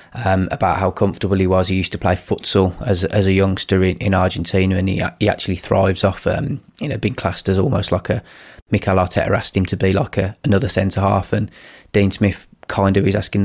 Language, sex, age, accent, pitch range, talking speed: English, male, 20-39, British, 95-110 Hz, 230 wpm